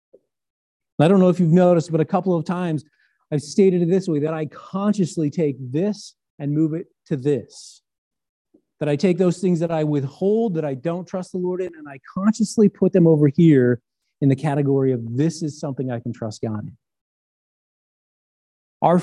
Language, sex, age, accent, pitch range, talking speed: English, male, 40-59, American, 135-180 Hz, 190 wpm